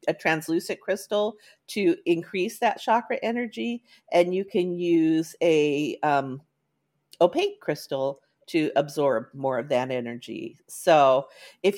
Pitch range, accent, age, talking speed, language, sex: 165-215 Hz, American, 40-59, 120 wpm, English, female